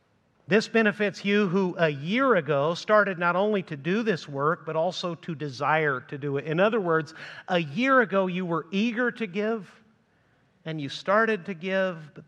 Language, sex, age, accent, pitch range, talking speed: English, male, 50-69, American, 145-195 Hz, 185 wpm